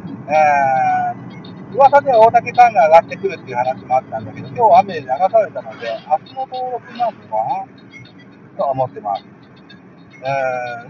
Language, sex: Japanese, male